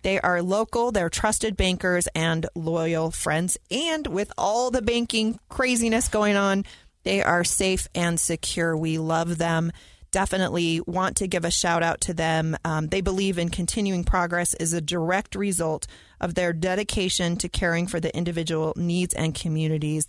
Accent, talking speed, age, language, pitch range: American, 165 wpm, 30-49, English, 160-190 Hz